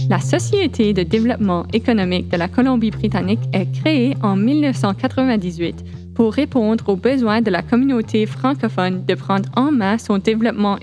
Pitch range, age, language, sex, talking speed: 200-250 Hz, 20-39, French, female, 145 wpm